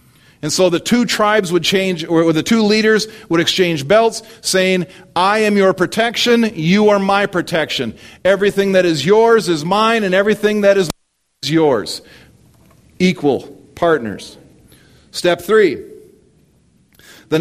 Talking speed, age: 140 wpm, 40-59